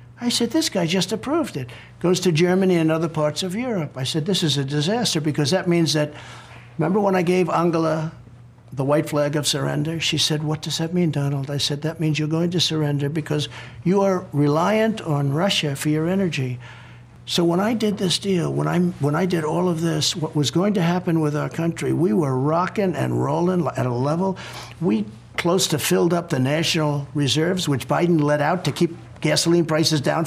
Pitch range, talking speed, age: 145-180 Hz, 210 wpm, 60-79